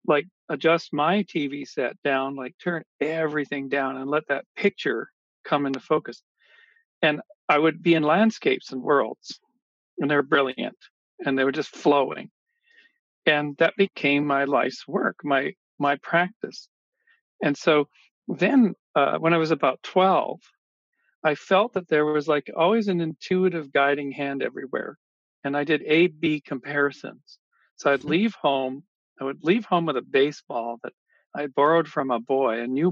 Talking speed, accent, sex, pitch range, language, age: 160 wpm, American, male, 140-180 Hz, English, 50-69